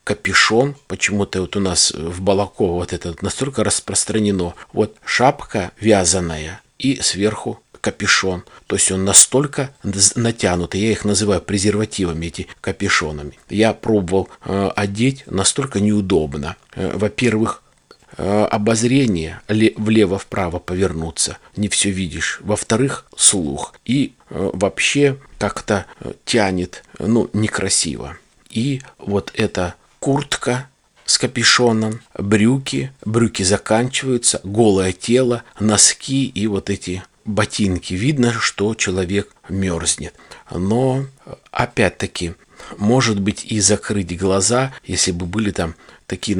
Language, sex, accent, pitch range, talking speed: Russian, male, native, 95-110 Hz, 105 wpm